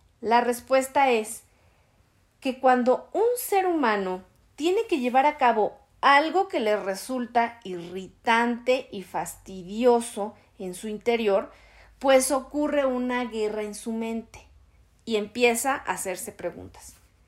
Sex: female